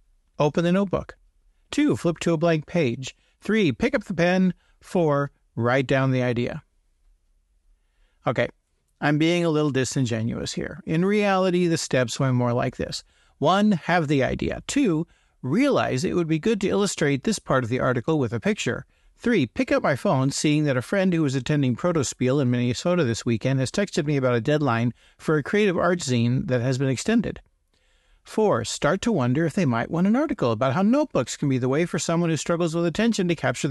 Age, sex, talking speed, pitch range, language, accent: 50-69, male, 200 wpm, 125-180 Hz, English, American